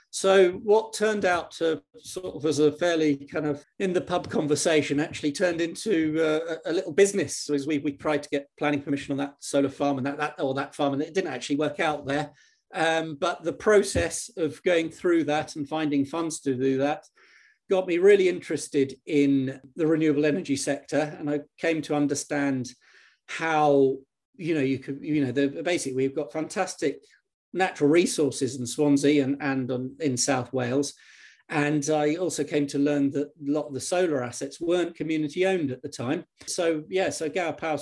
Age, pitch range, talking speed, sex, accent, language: 40-59, 140-165 Hz, 195 wpm, male, British, English